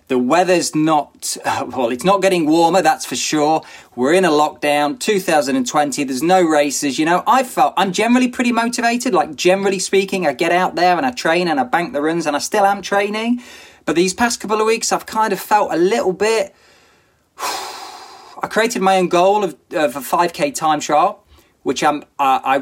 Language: English